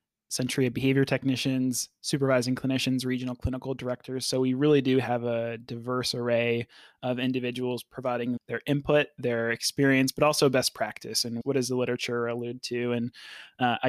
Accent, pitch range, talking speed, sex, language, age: American, 120-135 Hz, 160 wpm, male, English, 20-39